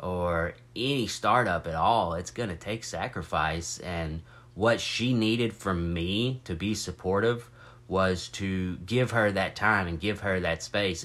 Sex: male